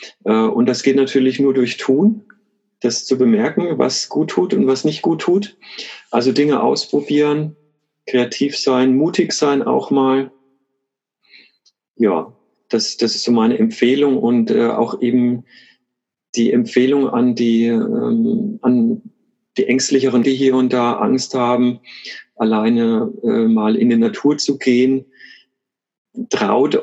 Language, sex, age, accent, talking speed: German, male, 40-59, German, 130 wpm